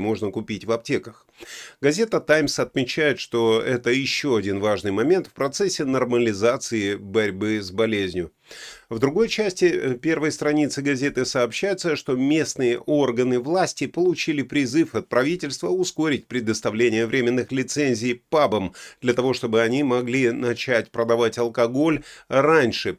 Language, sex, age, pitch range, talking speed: Russian, male, 30-49, 105-135 Hz, 125 wpm